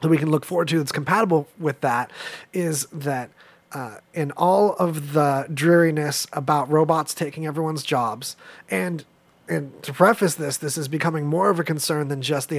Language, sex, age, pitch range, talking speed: English, male, 30-49, 145-170 Hz, 180 wpm